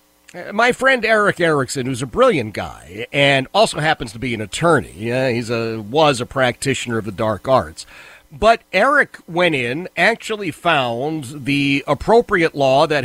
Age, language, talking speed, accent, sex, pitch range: 50-69, English, 160 wpm, American, male, 140-225 Hz